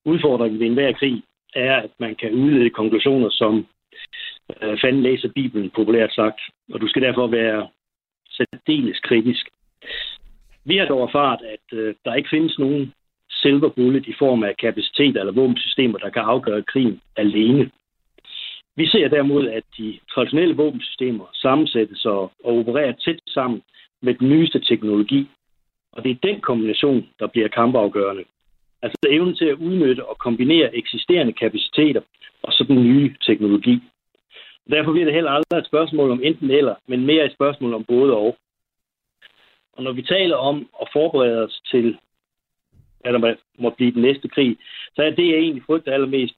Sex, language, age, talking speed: male, Danish, 60-79, 160 wpm